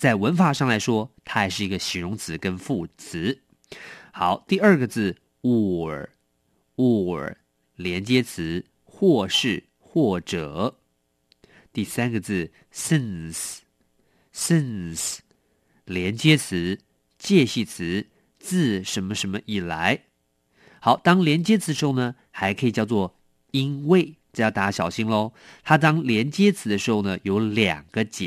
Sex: male